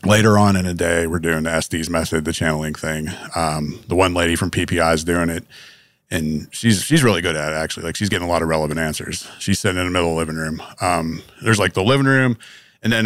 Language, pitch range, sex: English, 85-110 Hz, male